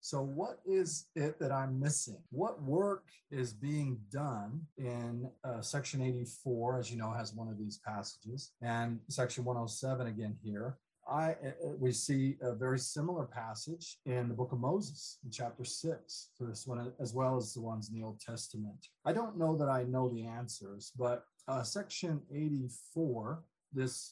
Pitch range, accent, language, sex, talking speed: 115-145 Hz, American, English, male, 175 wpm